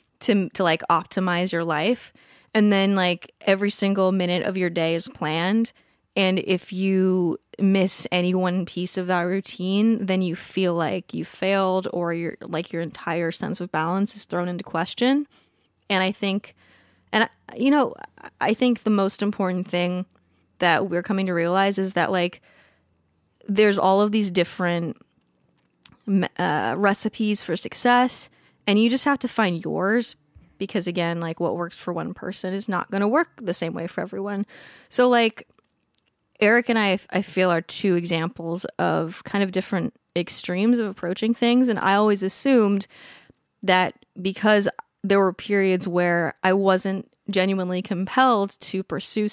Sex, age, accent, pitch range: female, 20-39, American, 175-210 Hz